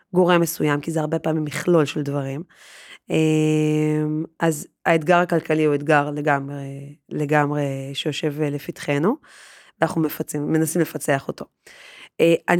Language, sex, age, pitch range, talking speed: Hebrew, female, 30-49, 160-215 Hz, 115 wpm